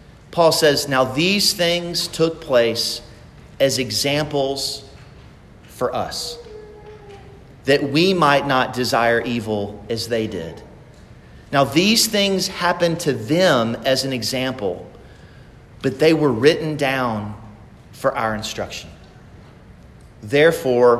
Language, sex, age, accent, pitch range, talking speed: English, male, 40-59, American, 115-165 Hz, 110 wpm